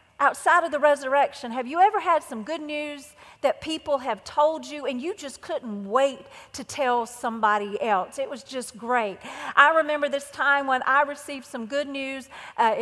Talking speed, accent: 185 wpm, American